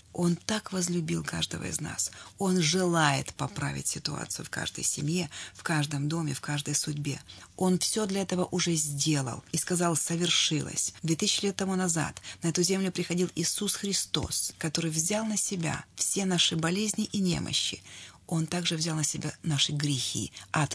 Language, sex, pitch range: Russian, female, 155-190 Hz